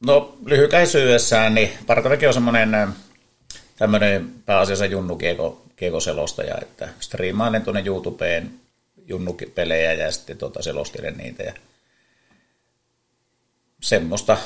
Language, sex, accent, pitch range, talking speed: Finnish, male, native, 90-105 Hz, 85 wpm